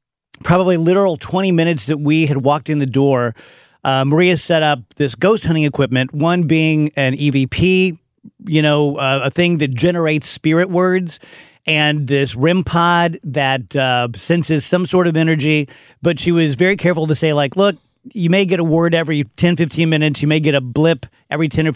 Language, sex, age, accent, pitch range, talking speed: English, male, 40-59, American, 135-170 Hz, 190 wpm